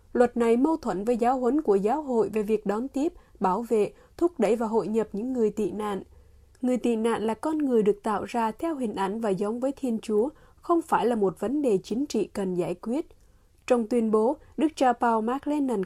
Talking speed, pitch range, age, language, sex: 225 wpm, 210-275 Hz, 20-39, Vietnamese, female